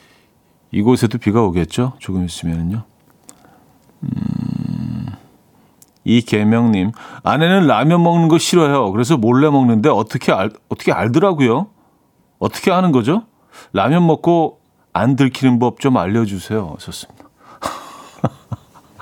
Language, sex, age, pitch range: Korean, male, 40-59, 105-150 Hz